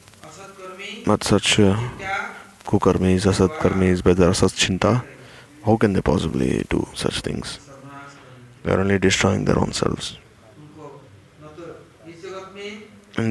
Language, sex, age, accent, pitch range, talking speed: English, male, 30-49, Indian, 95-155 Hz, 100 wpm